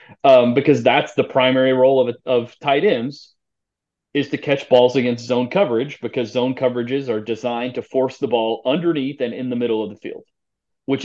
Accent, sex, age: American, male, 30-49